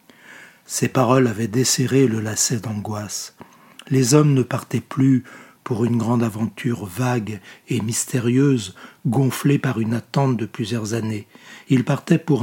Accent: French